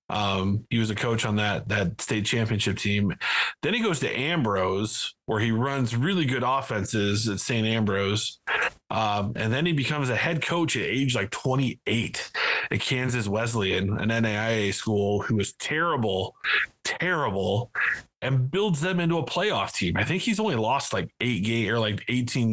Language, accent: English, American